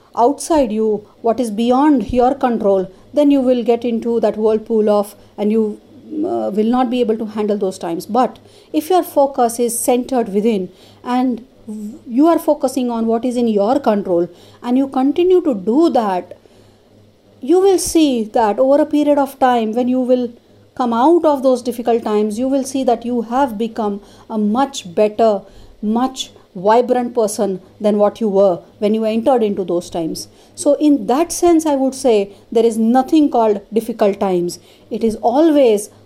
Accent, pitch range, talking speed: Indian, 215-265 Hz, 175 wpm